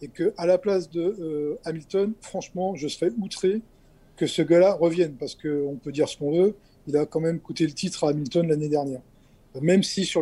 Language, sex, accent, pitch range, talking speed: French, male, French, 150-185 Hz, 210 wpm